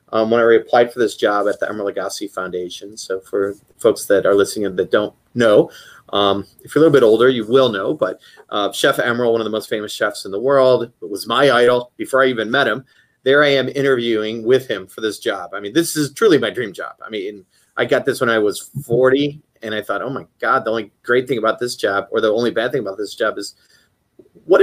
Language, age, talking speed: English, 30-49, 245 wpm